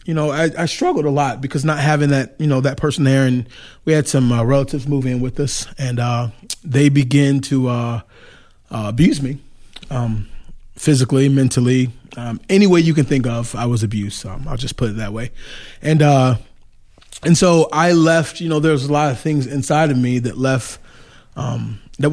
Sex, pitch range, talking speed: male, 125-150 Hz, 205 wpm